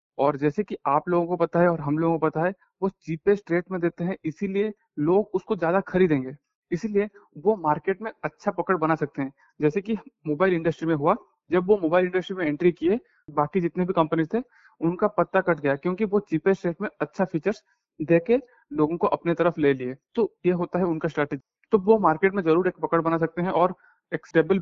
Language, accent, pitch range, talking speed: Hindi, native, 160-195 Hz, 215 wpm